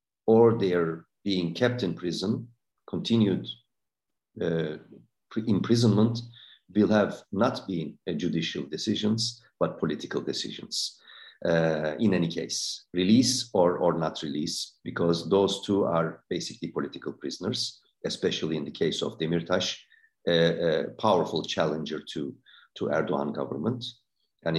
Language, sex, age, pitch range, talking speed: Turkish, male, 50-69, 85-115 Hz, 120 wpm